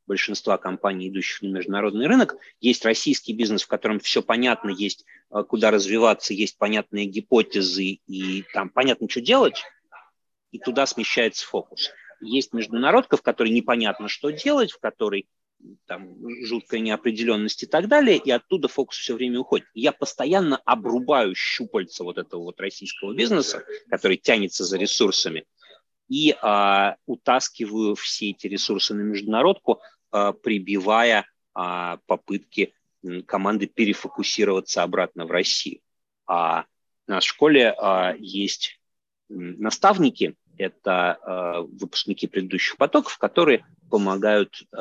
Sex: male